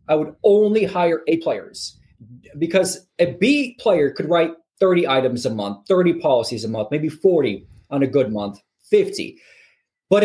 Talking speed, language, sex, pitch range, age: 165 wpm, English, male, 145-200 Hz, 20-39